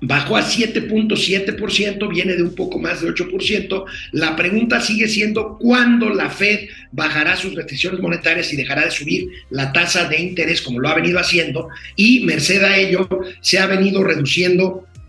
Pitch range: 150-200 Hz